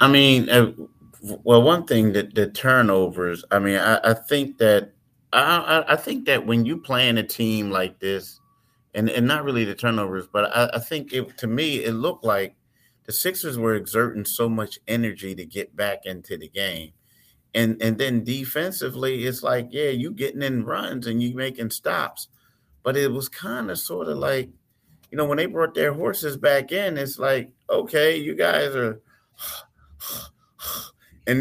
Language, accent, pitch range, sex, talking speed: English, American, 115-145 Hz, male, 180 wpm